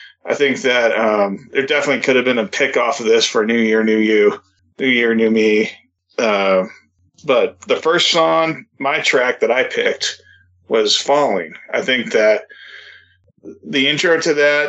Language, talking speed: English, 170 wpm